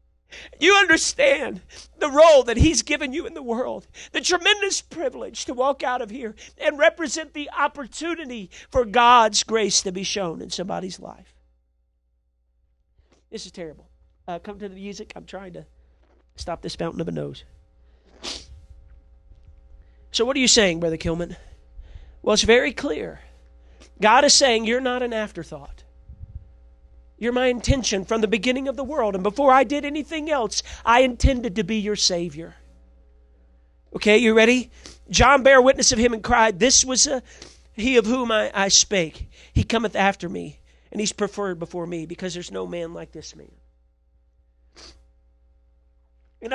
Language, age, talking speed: English, 40-59, 160 wpm